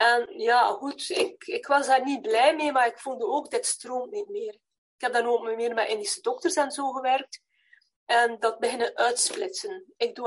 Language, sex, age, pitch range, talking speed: Dutch, female, 40-59, 235-350 Hz, 205 wpm